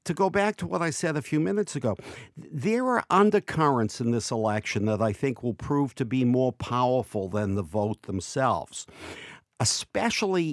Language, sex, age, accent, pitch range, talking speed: English, male, 60-79, American, 105-150 Hz, 175 wpm